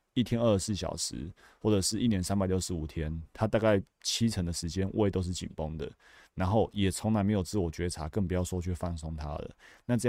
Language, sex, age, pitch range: Chinese, male, 30-49, 85-110 Hz